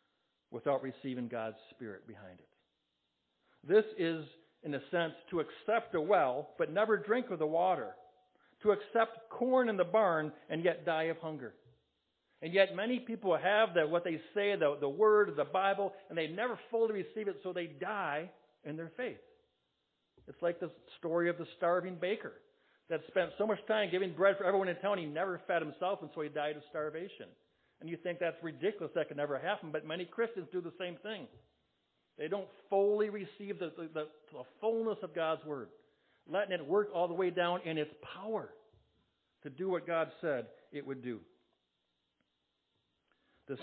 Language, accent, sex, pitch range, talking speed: English, American, male, 155-205 Hz, 180 wpm